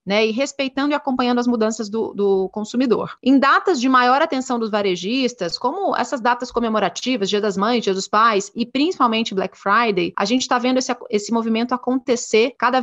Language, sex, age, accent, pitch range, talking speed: English, female, 30-49, Brazilian, 220-265 Hz, 185 wpm